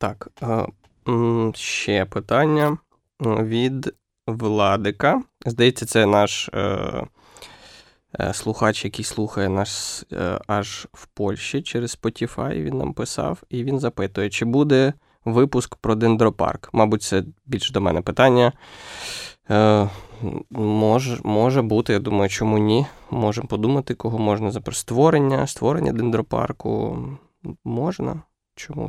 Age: 20-39